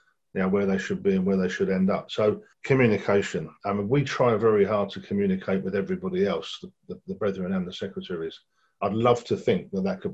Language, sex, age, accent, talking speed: English, male, 40-59, British, 230 wpm